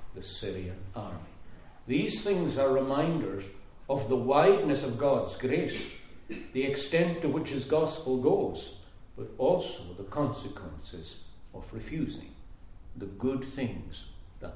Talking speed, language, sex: 125 wpm, English, male